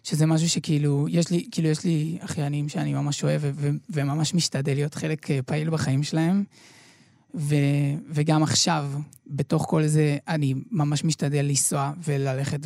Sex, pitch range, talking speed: male, 140-165 Hz, 150 wpm